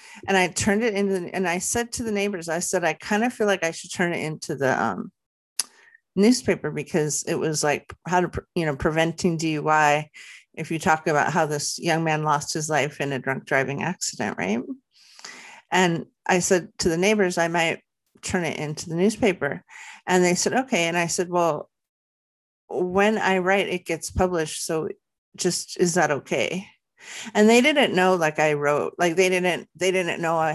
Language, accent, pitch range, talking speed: English, American, 160-200 Hz, 195 wpm